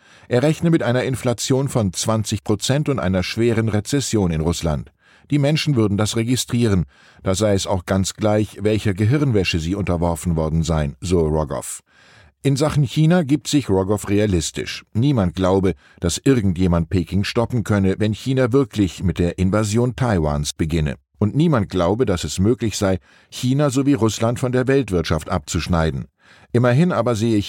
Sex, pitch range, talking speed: male, 90-125 Hz, 155 wpm